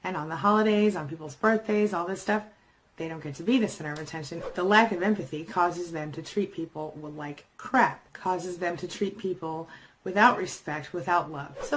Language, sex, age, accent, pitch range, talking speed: English, female, 30-49, American, 170-220 Hz, 210 wpm